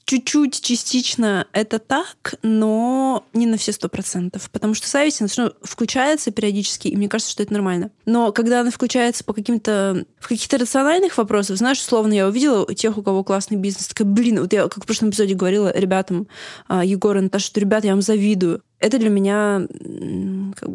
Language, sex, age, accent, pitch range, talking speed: Russian, female, 20-39, native, 205-250 Hz, 180 wpm